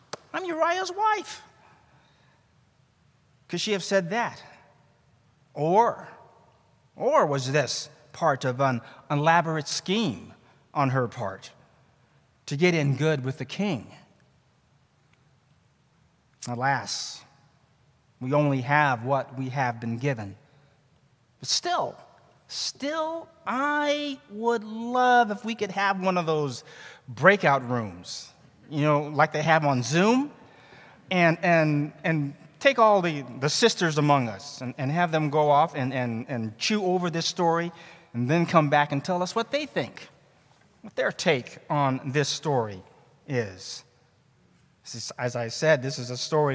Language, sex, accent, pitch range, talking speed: English, male, American, 130-170 Hz, 140 wpm